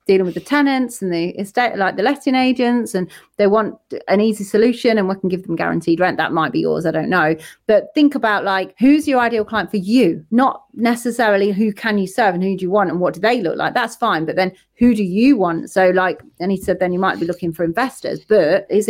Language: English